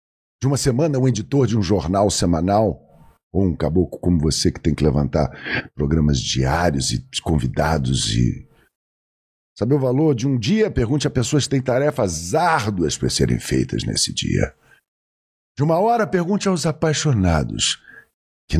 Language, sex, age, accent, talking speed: Portuguese, male, 50-69, Brazilian, 155 wpm